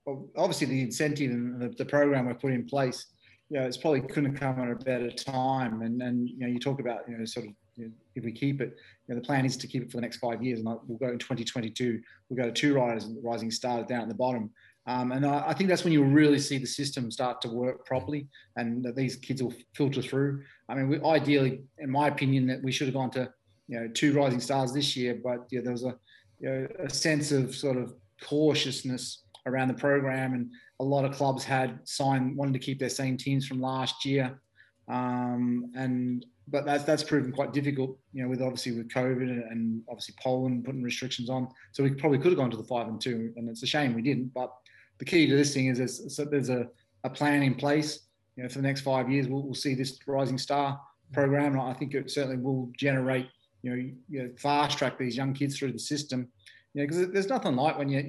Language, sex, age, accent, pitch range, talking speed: English, male, 30-49, Australian, 125-140 Hz, 245 wpm